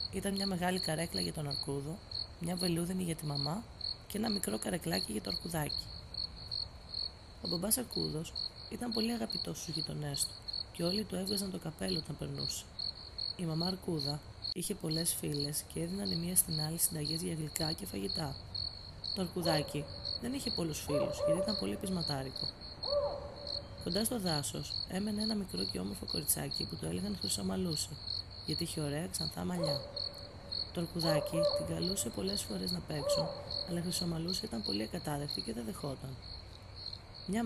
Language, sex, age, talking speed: Greek, female, 30-49, 160 wpm